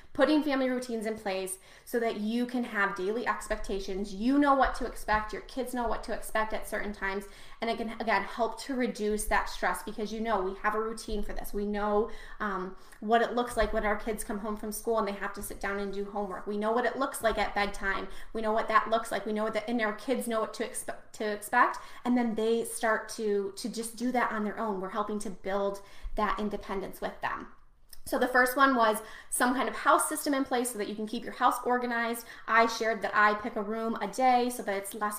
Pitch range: 205-245 Hz